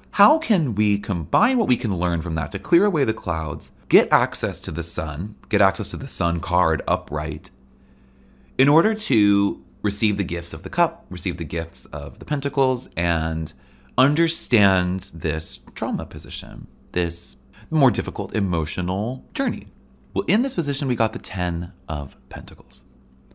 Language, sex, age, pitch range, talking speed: English, male, 30-49, 75-115 Hz, 160 wpm